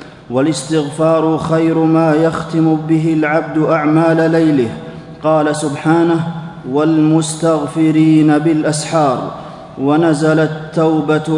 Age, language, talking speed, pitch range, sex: 30-49, Arabic, 75 wpm, 155-160 Hz, male